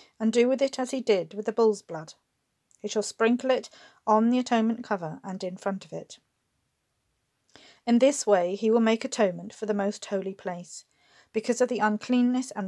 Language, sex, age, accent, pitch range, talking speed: English, female, 40-59, British, 195-240 Hz, 195 wpm